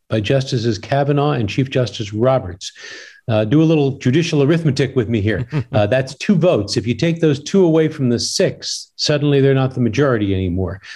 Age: 50-69